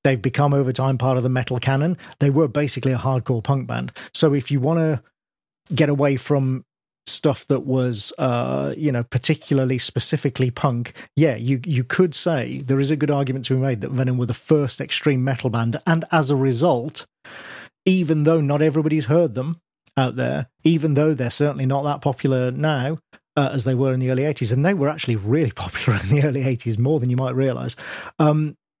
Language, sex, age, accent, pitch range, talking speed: English, male, 40-59, British, 130-155 Hz, 205 wpm